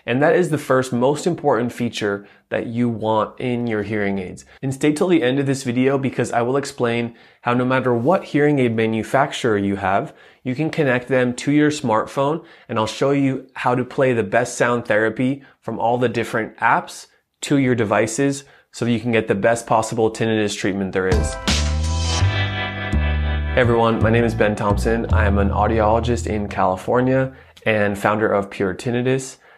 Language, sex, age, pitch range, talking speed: English, male, 20-39, 105-130 Hz, 185 wpm